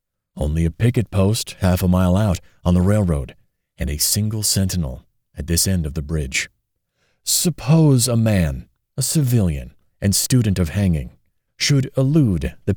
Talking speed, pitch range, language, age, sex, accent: 155 wpm, 80-105 Hz, English, 40-59, male, American